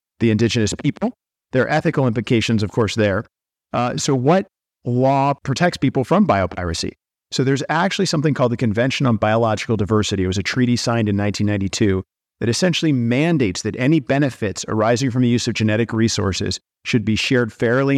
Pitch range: 110-135 Hz